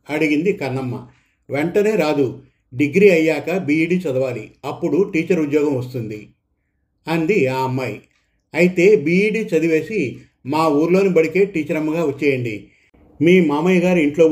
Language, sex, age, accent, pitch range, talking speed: Telugu, male, 50-69, native, 135-165 Hz, 115 wpm